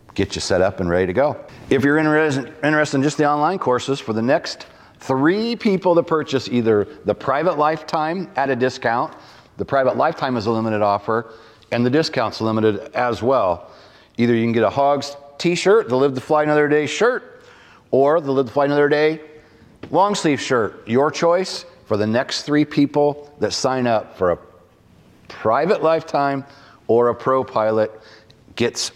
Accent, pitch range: American, 105-140 Hz